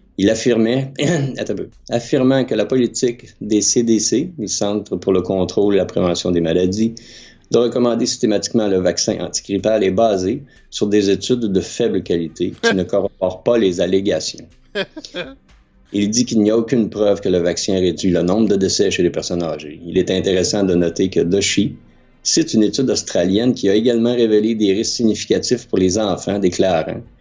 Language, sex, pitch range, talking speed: French, male, 95-115 Hz, 175 wpm